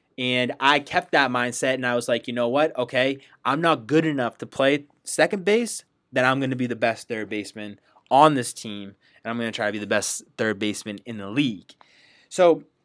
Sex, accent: male, American